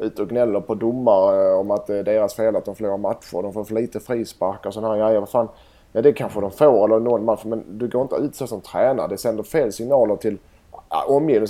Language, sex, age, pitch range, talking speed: Swedish, male, 20-39, 105-125 Hz, 255 wpm